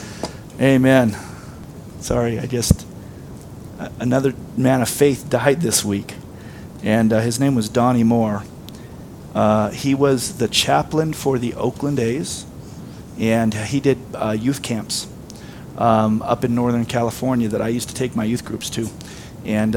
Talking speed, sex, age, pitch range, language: 145 wpm, male, 40-59, 120-140 Hz, English